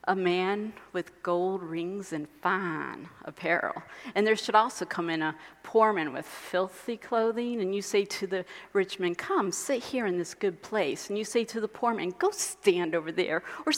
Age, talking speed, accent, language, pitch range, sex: 40-59, 200 wpm, American, English, 195-265 Hz, female